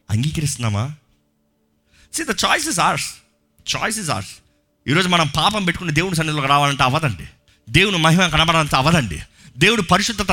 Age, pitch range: 30-49, 115-195 Hz